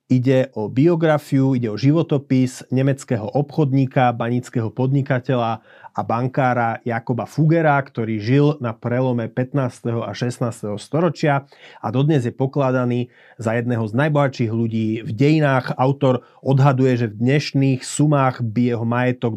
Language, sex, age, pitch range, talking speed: Slovak, male, 30-49, 120-145 Hz, 130 wpm